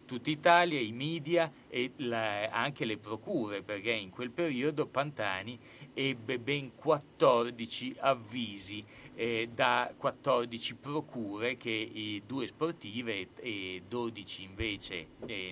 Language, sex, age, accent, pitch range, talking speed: Italian, male, 40-59, native, 110-135 Hz, 115 wpm